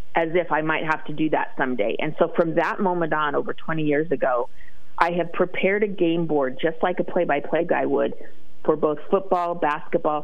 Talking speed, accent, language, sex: 205 wpm, American, English, female